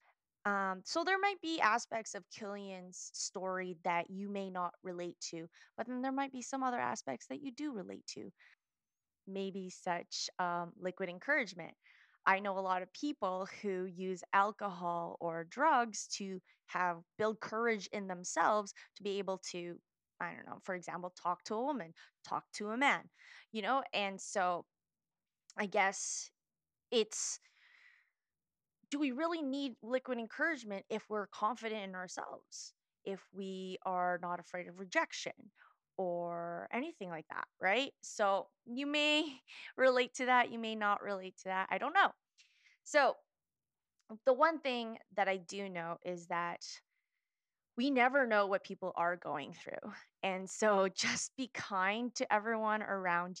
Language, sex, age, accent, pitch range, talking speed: English, female, 20-39, American, 185-250 Hz, 155 wpm